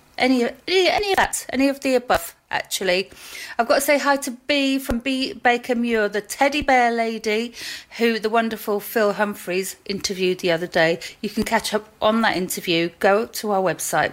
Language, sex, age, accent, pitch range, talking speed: English, female, 40-59, British, 190-245 Hz, 190 wpm